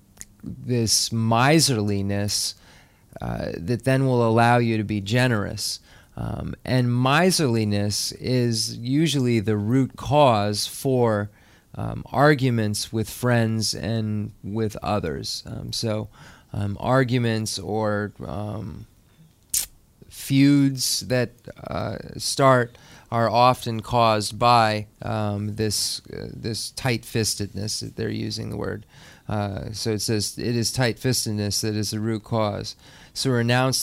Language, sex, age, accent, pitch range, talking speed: English, male, 30-49, American, 105-120 Hz, 115 wpm